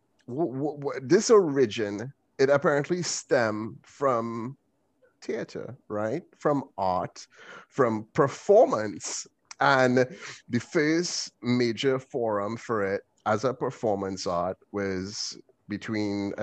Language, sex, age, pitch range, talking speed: English, male, 30-49, 100-125 Hz, 90 wpm